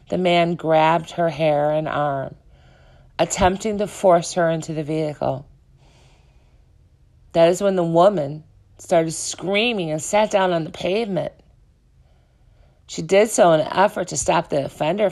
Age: 50-69